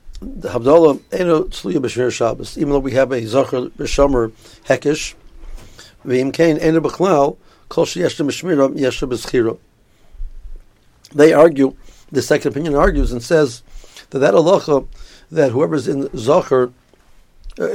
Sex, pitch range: male, 125-150 Hz